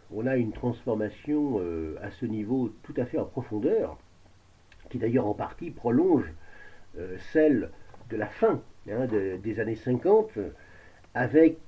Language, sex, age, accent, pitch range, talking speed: French, male, 50-69, French, 100-140 Hz, 145 wpm